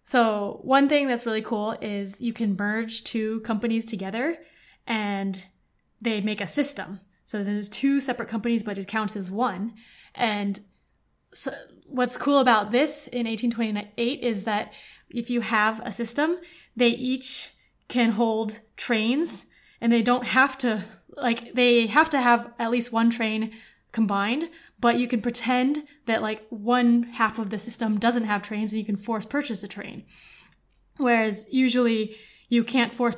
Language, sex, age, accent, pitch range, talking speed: English, female, 20-39, American, 210-245 Hz, 160 wpm